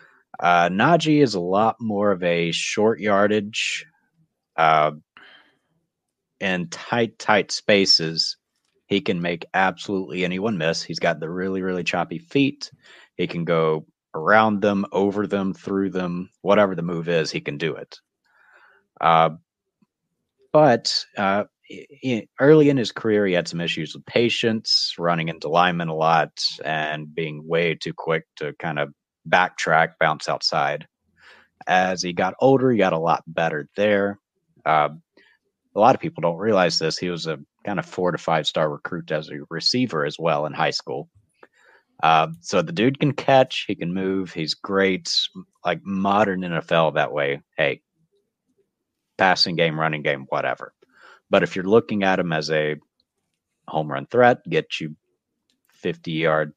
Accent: American